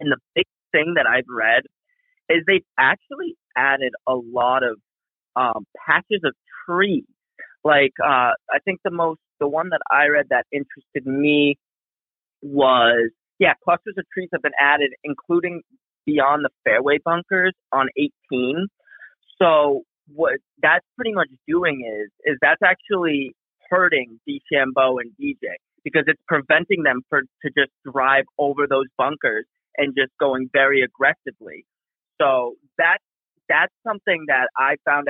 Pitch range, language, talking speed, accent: 135-195 Hz, English, 140 wpm, American